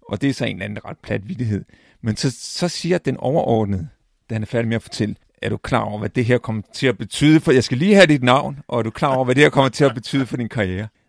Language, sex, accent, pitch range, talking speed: Danish, male, native, 115-145 Hz, 305 wpm